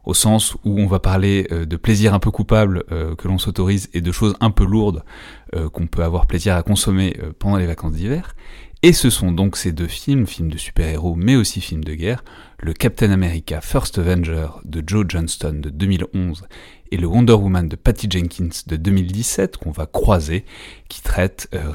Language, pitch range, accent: French, 85-105 Hz, French